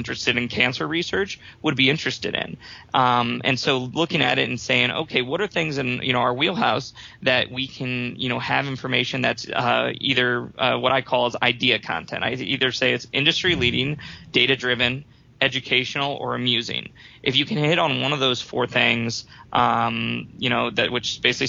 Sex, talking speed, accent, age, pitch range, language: male, 195 wpm, American, 20-39, 120-135 Hz, English